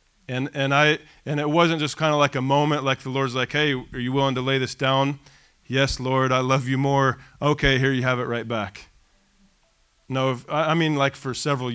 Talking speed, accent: 225 wpm, American